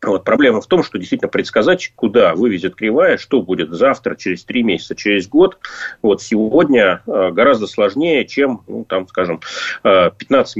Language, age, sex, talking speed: Russian, 30-49, male, 155 wpm